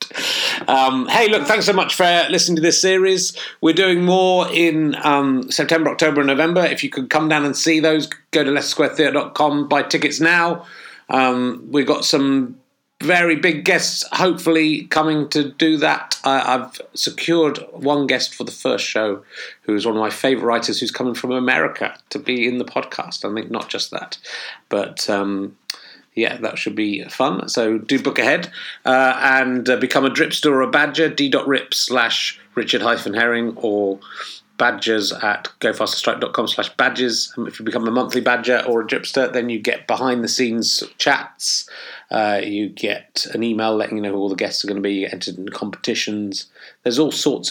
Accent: British